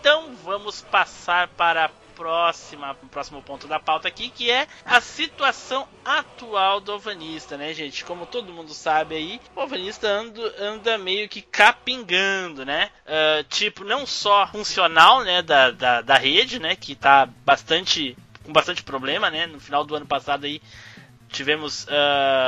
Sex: male